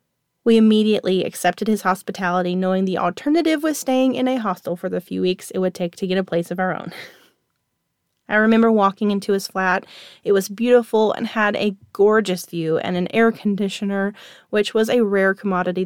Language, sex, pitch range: English, female, 190-225 Hz